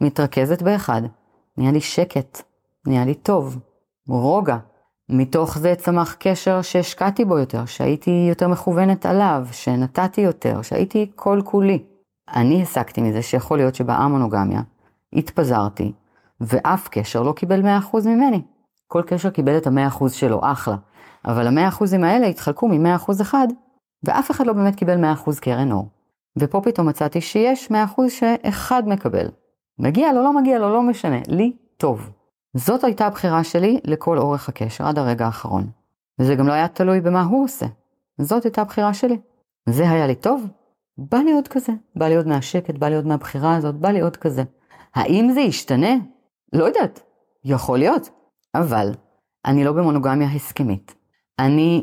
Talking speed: 150 wpm